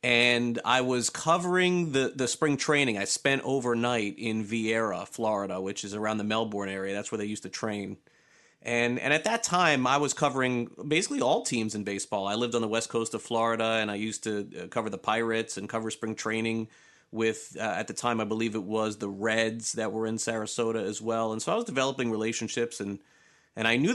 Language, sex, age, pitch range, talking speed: English, male, 30-49, 110-125 Hz, 215 wpm